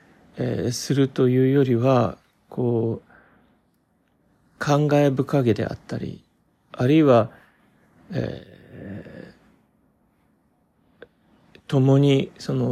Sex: male